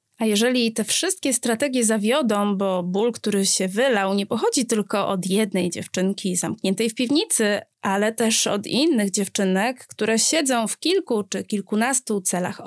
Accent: native